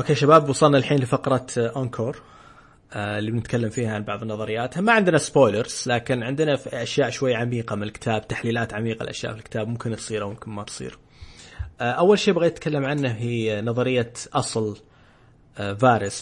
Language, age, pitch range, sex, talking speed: Arabic, 20-39, 115-140 Hz, male, 155 wpm